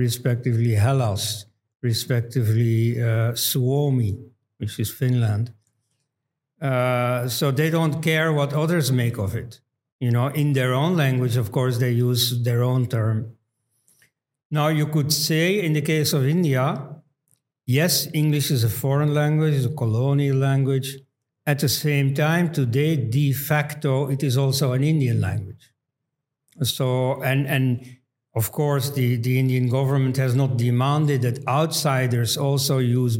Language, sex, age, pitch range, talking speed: Hindi, male, 60-79, 125-145 Hz, 145 wpm